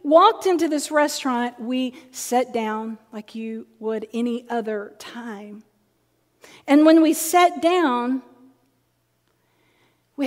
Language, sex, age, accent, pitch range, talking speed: English, female, 40-59, American, 215-270 Hz, 110 wpm